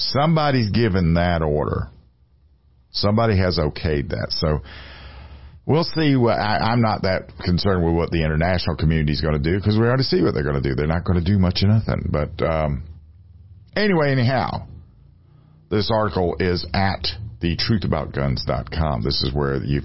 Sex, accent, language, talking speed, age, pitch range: male, American, English, 165 wpm, 50-69, 75-105 Hz